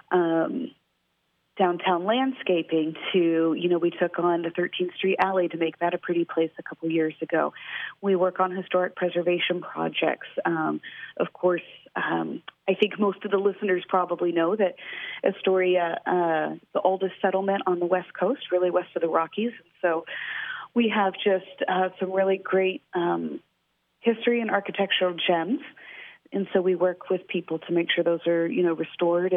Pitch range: 175-215 Hz